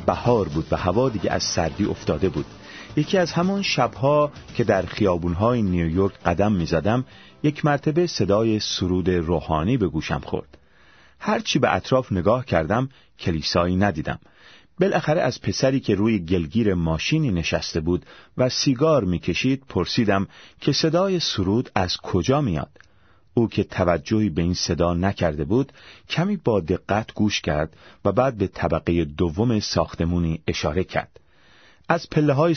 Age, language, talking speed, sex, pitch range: 40-59, Persian, 140 wpm, male, 85-125 Hz